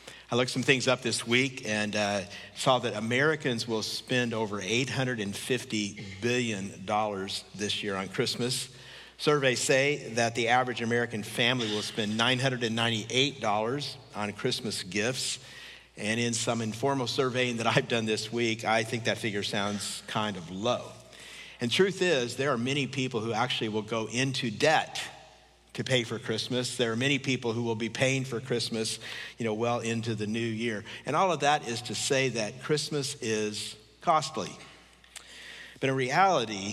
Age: 50-69